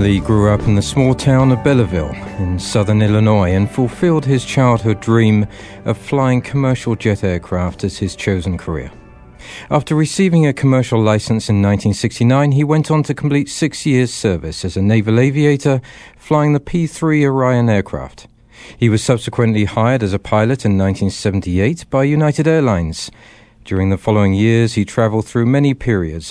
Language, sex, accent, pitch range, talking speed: English, male, British, 100-130 Hz, 160 wpm